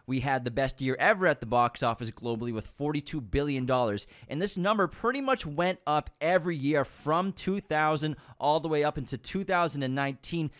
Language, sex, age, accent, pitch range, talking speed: English, male, 20-39, American, 125-155 Hz, 175 wpm